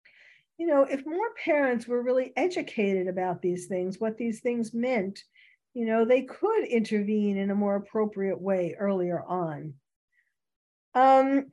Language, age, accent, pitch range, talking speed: English, 50-69, American, 185-255 Hz, 145 wpm